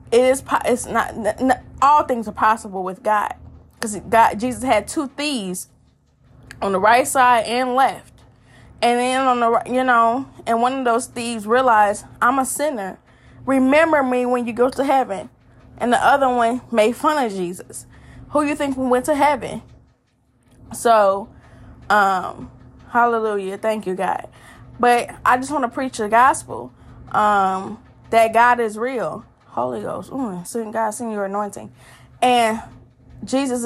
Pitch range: 210-255 Hz